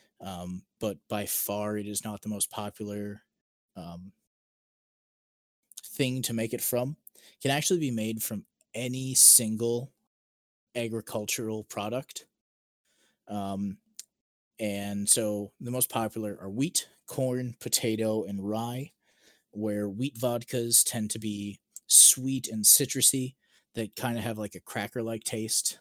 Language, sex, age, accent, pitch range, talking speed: English, male, 20-39, American, 105-120 Hz, 130 wpm